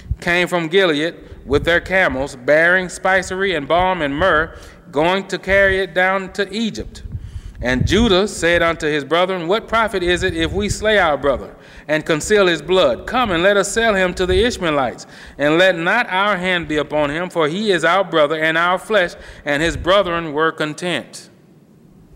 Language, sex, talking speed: English, male, 185 wpm